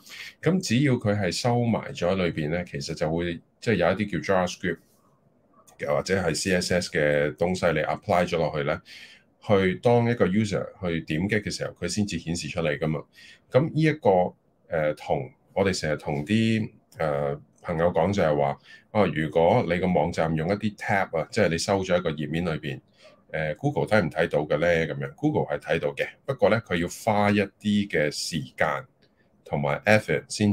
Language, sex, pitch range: Chinese, male, 75-105 Hz